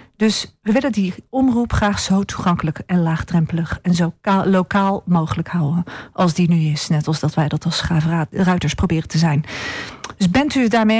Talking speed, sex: 190 wpm, female